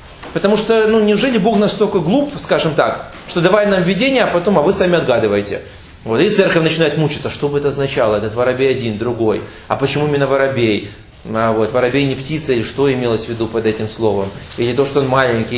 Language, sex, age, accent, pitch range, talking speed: Russian, male, 30-49, native, 135-210 Hz, 210 wpm